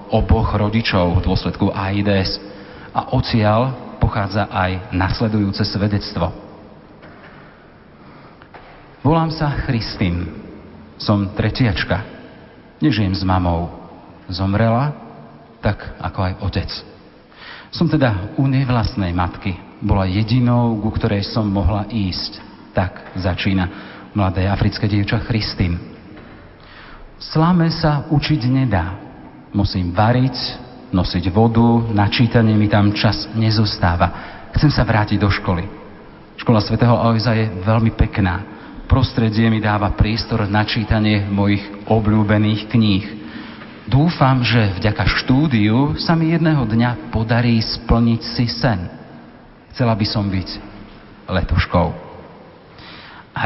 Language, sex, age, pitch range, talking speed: Slovak, male, 40-59, 100-115 Hz, 105 wpm